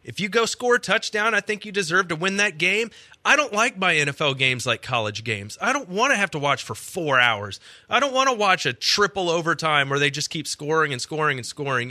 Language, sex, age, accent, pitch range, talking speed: English, male, 30-49, American, 130-185 Hz, 250 wpm